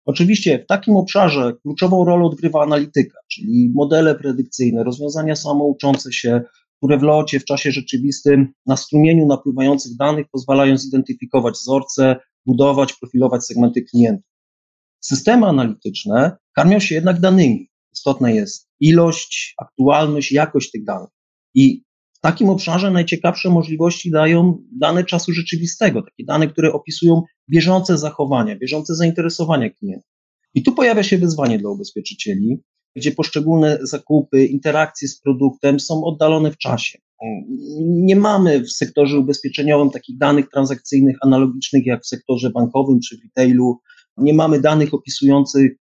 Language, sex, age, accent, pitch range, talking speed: Polish, male, 30-49, native, 135-170 Hz, 130 wpm